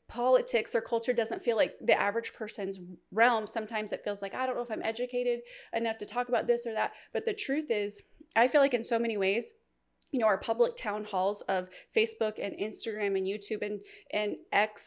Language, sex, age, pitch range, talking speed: English, female, 20-39, 205-245 Hz, 215 wpm